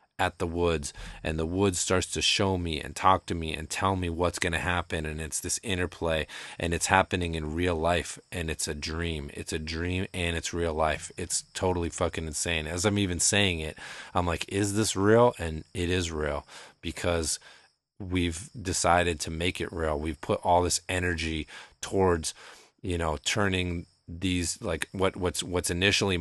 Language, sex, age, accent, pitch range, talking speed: English, male, 30-49, American, 85-100 Hz, 190 wpm